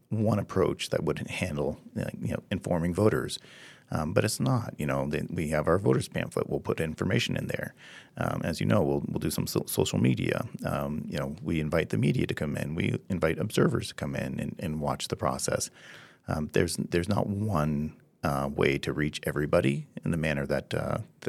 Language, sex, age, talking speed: English, male, 30-49, 205 wpm